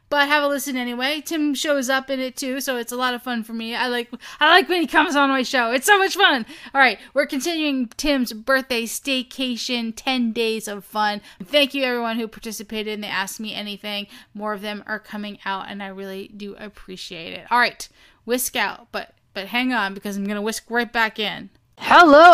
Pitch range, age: 225-290 Hz, 10-29